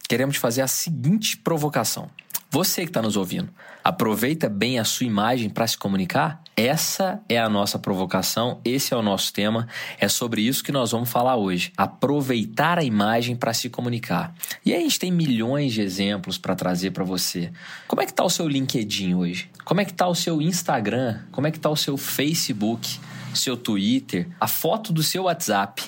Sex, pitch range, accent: male, 105-160 Hz, Brazilian